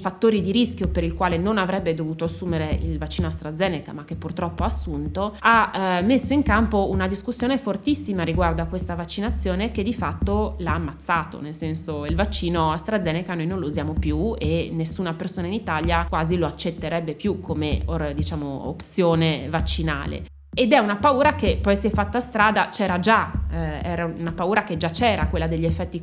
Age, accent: 20-39, native